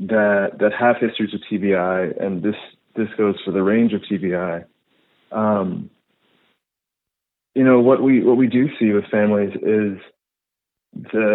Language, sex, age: English, male, 30-49